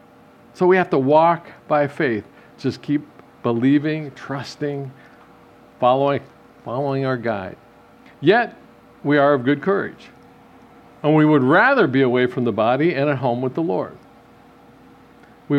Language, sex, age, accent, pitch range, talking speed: English, male, 50-69, American, 140-175 Hz, 140 wpm